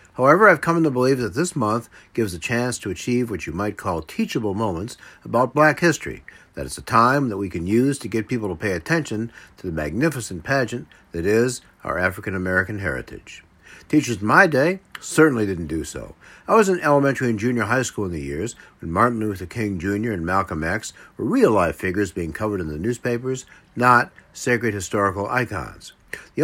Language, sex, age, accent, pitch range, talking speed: English, male, 60-79, American, 95-130 Hz, 200 wpm